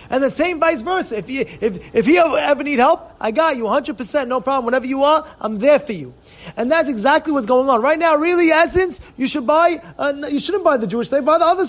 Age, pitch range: 30-49, 220-315 Hz